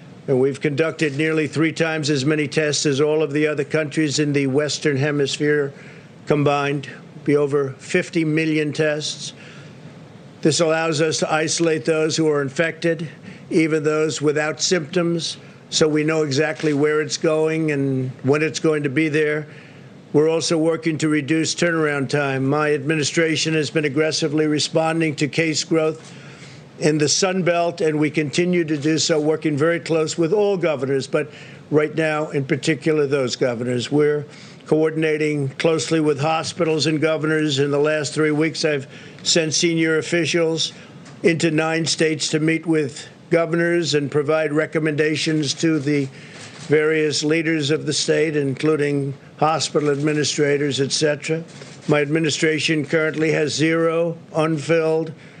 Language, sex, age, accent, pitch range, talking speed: English, male, 50-69, American, 150-160 Hz, 150 wpm